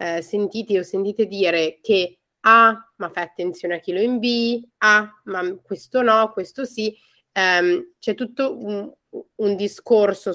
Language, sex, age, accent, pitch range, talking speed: Italian, female, 30-49, native, 175-220 Hz, 160 wpm